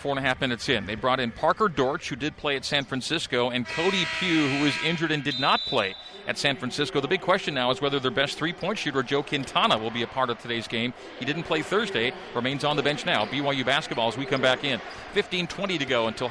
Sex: male